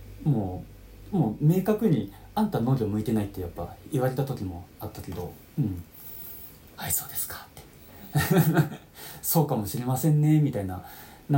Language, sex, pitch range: Japanese, male, 90-140 Hz